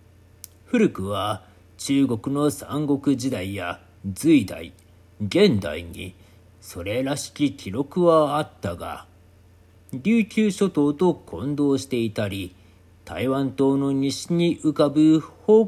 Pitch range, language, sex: 90-140 Hz, Japanese, male